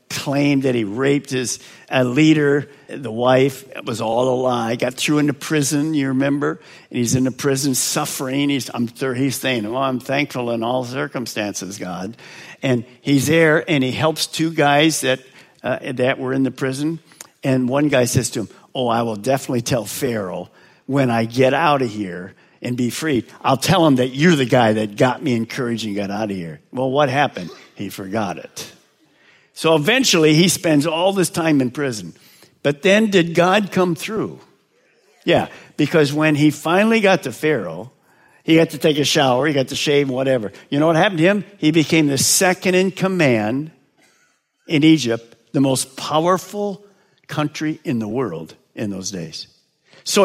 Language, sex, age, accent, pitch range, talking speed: English, male, 50-69, American, 125-160 Hz, 185 wpm